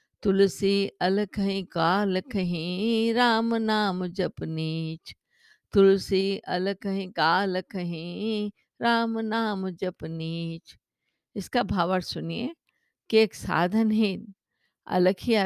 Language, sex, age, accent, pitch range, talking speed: Hindi, female, 50-69, native, 175-225 Hz, 95 wpm